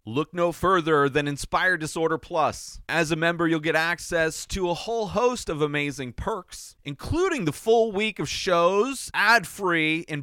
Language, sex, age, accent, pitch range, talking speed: English, male, 30-49, American, 120-165 Hz, 165 wpm